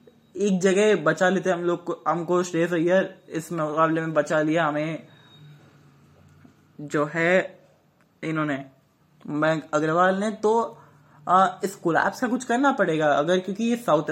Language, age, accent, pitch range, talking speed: English, 20-39, Indian, 155-210 Hz, 155 wpm